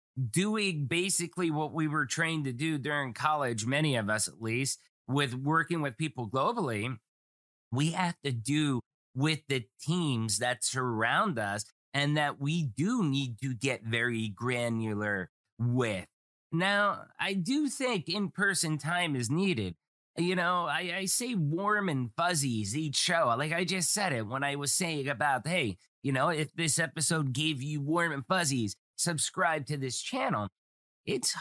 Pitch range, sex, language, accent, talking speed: 125-170 Hz, male, English, American, 160 wpm